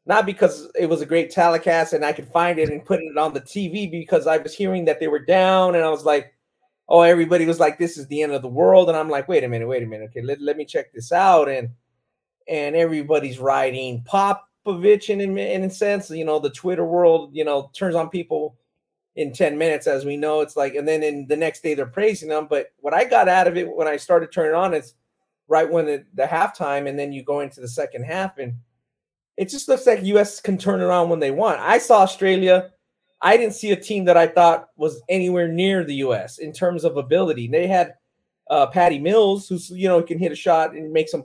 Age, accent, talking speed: 30-49, American, 245 wpm